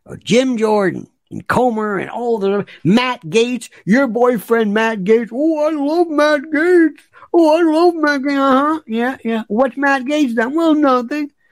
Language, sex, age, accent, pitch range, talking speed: English, male, 60-79, American, 185-290 Hz, 170 wpm